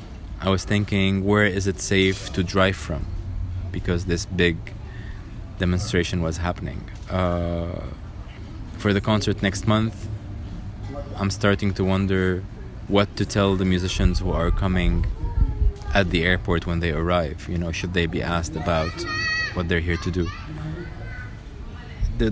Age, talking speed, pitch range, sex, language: 20-39, 145 wpm, 90-100 Hz, male, English